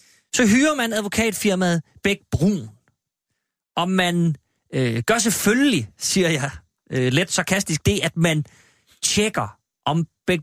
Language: Danish